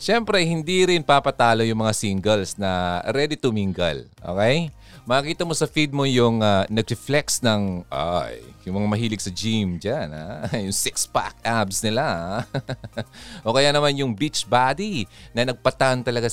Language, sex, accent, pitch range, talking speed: Filipino, male, native, 110-155 Hz, 160 wpm